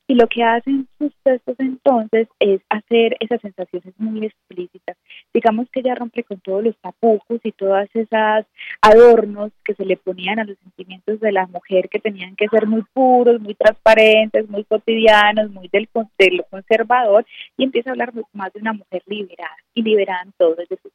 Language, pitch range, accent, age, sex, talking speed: Spanish, 190-230 Hz, Colombian, 30-49, female, 180 wpm